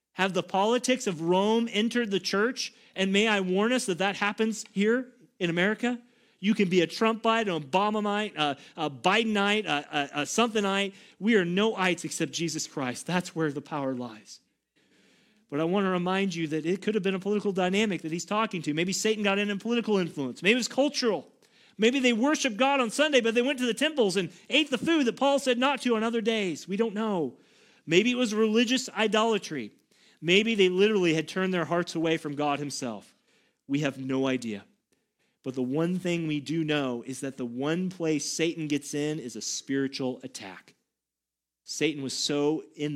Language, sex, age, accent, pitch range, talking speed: English, male, 40-59, American, 150-215 Hz, 200 wpm